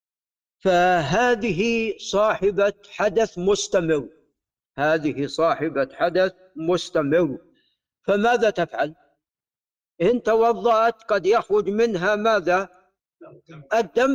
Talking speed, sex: 70 wpm, male